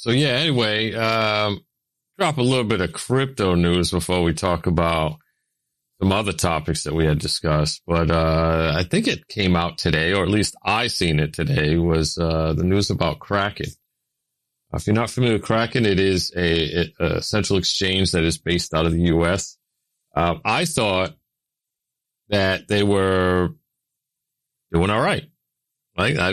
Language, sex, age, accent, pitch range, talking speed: English, male, 40-59, American, 85-110 Hz, 170 wpm